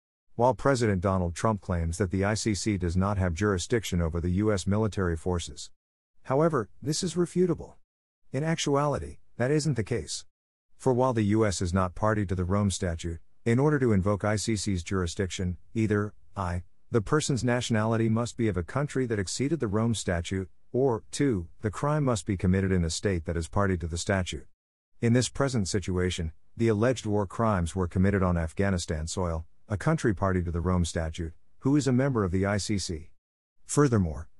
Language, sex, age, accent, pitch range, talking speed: English, male, 50-69, American, 90-115 Hz, 180 wpm